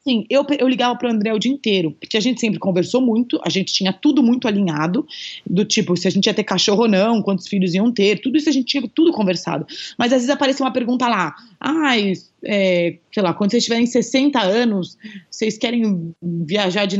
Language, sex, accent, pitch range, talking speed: Portuguese, female, Brazilian, 180-240 Hz, 220 wpm